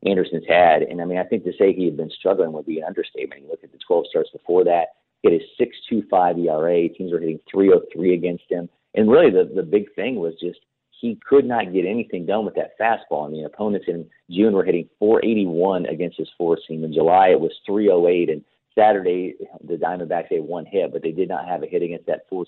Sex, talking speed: male, 250 wpm